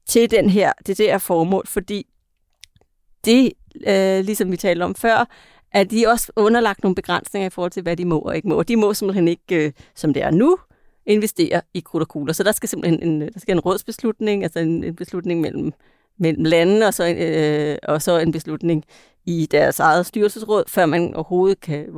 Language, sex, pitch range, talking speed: Danish, female, 170-215 Hz, 205 wpm